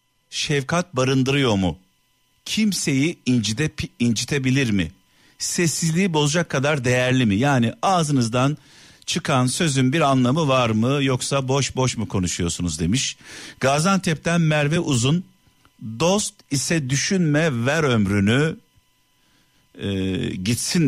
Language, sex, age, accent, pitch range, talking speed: Turkish, male, 50-69, native, 105-145 Hz, 105 wpm